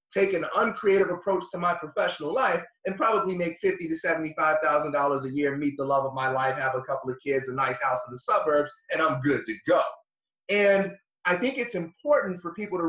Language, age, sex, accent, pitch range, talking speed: English, 30-49, male, American, 160-225 Hz, 215 wpm